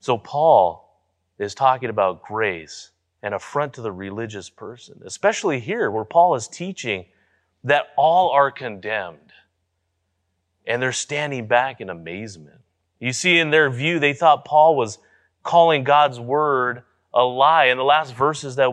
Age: 30-49